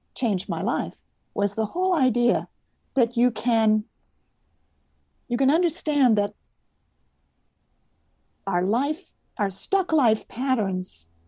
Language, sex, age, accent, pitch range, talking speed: English, female, 50-69, American, 175-230 Hz, 105 wpm